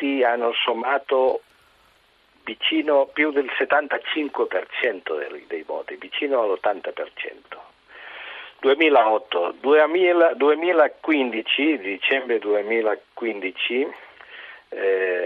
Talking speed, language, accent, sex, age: 65 wpm, Italian, native, male, 50-69